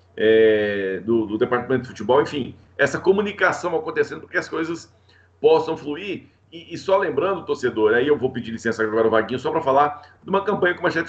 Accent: Brazilian